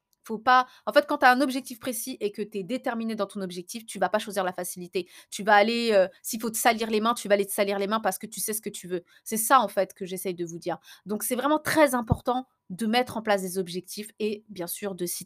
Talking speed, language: 290 wpm, French